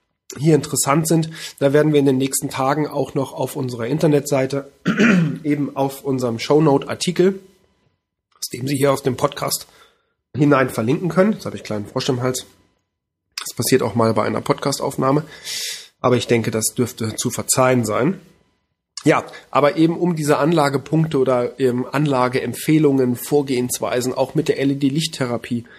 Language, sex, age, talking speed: German, male, 30-49, 150 wpm